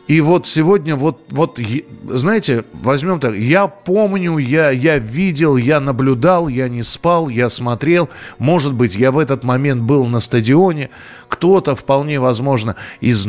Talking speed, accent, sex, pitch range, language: 150 wpm, native, male, 120-155 Hz, Russian